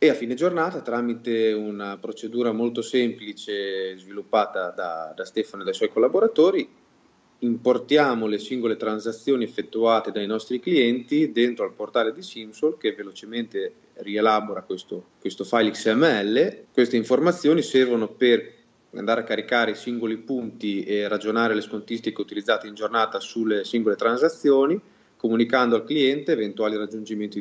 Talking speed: 135 wpm